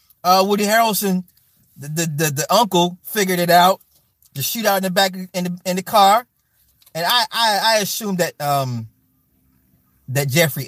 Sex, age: male, 30-49